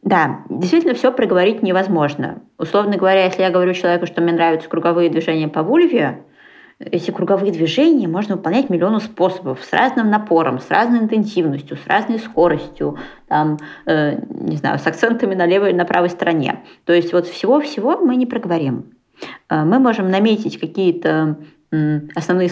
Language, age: Russian, 20-39